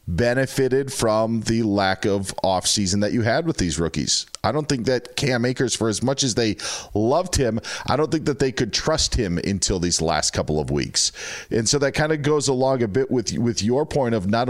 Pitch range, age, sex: 105-135 Hz, 40-59, male